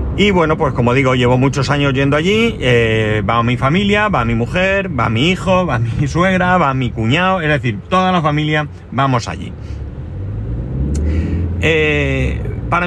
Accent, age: Spanish, 40-59